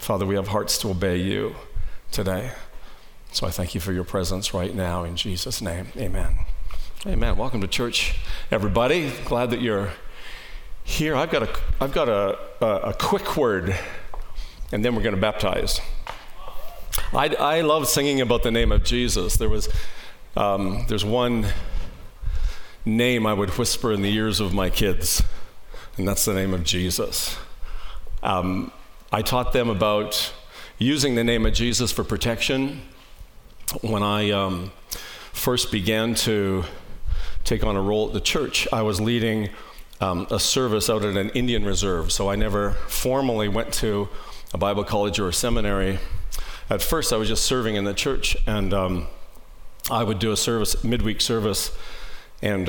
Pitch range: 95-115 Hz